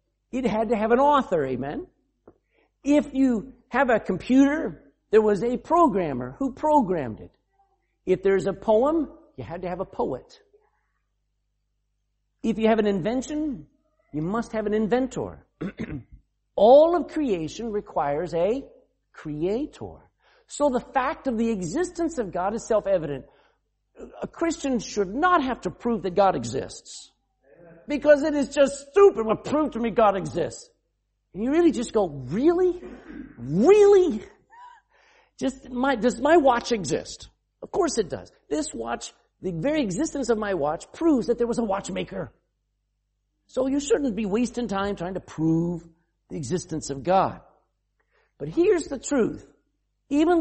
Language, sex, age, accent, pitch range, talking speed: English, male, 50-69, American, 190-295 Hz, 150 wpm